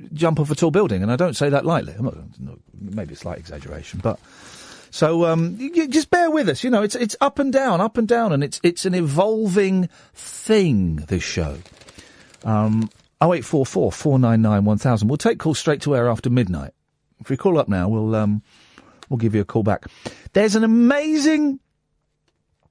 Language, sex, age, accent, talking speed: English, male, 40-59, British, 185 wpm